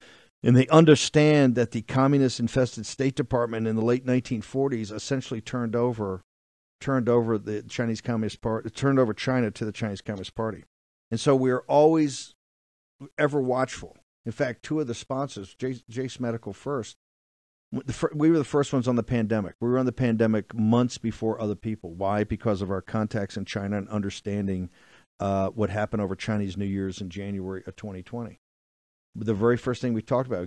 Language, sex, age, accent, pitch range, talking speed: English, male, 50-69, American, 100-125 Hz, 175 wpm